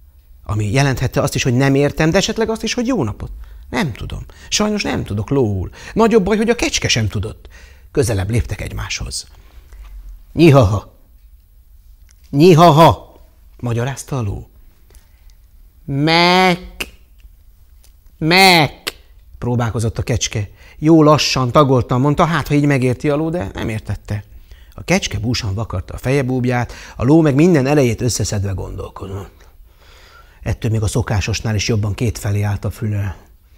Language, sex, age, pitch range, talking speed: Hungarian, male, 30-49, 100-150 Hz, 135 wpm